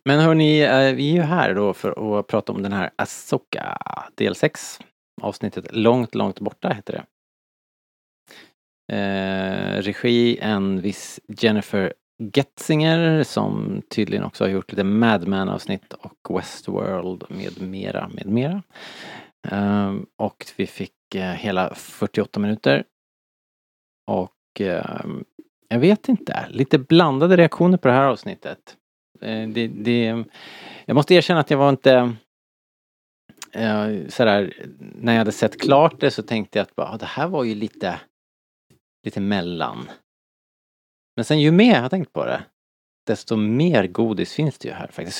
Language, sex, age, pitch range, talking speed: Swedish, male, 30-49, 100-140 Hz, 145 wpm